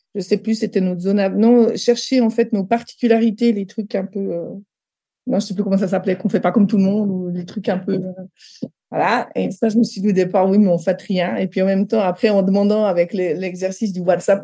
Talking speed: 270 wpm